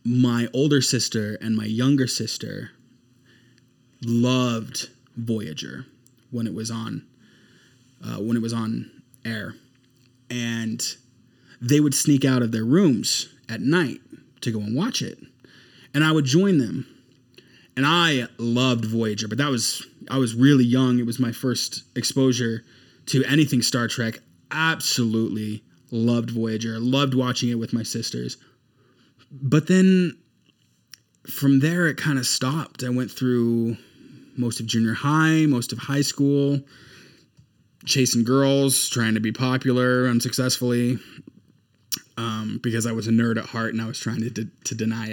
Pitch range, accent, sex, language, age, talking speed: 115-140 Hz, American, male, English, 20-39, 145 wpm